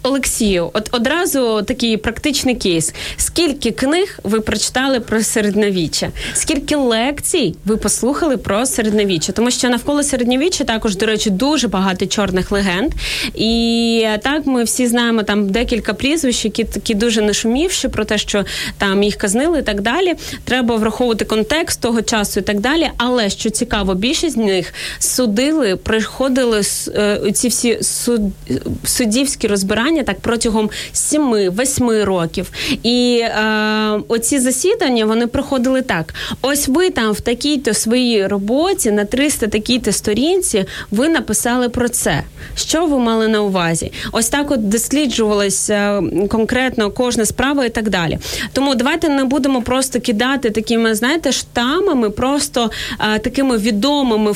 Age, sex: 20-39, female